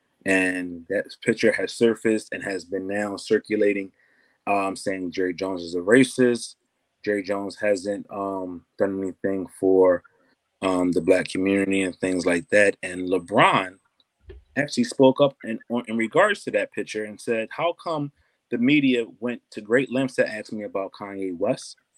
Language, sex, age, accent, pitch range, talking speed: English, male, 30-49, American, 100-120 Hz, 165 wpm